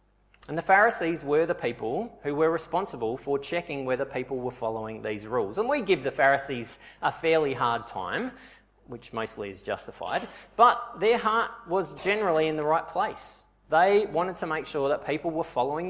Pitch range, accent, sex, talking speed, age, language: 135-190 Hz, Australian, male, 180 wpm, 20-39, English